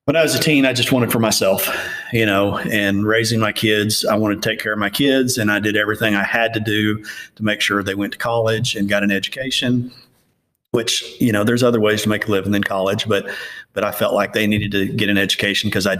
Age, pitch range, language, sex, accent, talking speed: 40-59, 100-115 Hz, English, male, American, 255 wpm